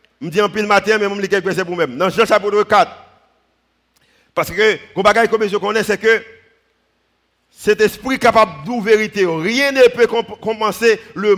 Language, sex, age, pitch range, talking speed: French, male, 50-69, 185-235 Hz, 190 wpm